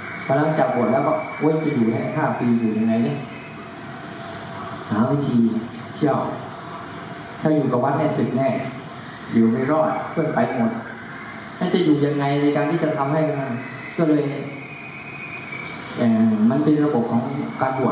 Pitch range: 130-155 Hz